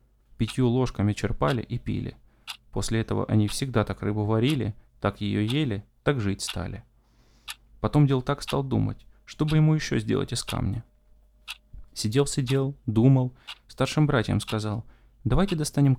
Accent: native